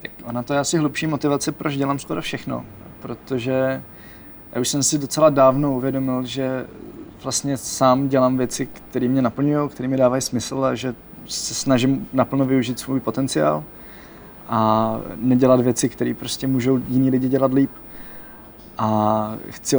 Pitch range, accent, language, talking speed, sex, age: 125-135 Hz, native, Czech, 155 wpm, male, 20-39